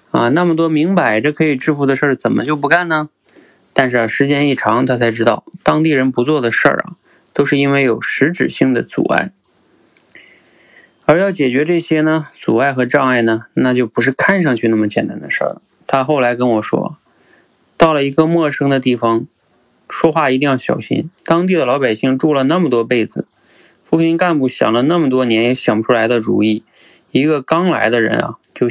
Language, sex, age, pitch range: Chinese, male, 20-39, 115-150 Hz